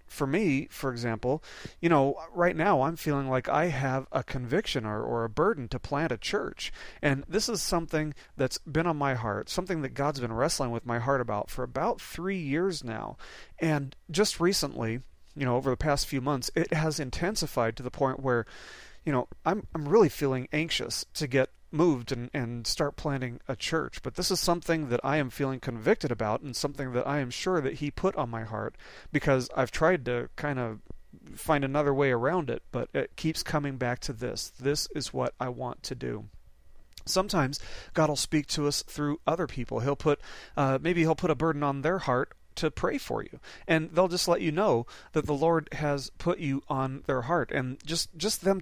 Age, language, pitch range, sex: 40-59, English, 130-165 Hz, male